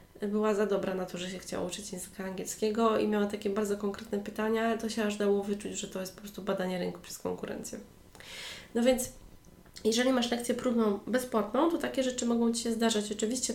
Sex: female